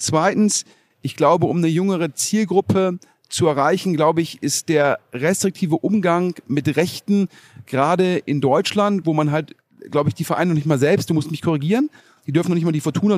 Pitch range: 150-180 Hz